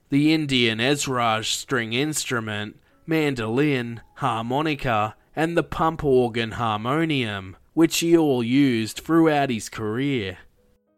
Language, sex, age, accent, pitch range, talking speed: English, male, 20-39, Australian, 115-155 Hz, 105 wpm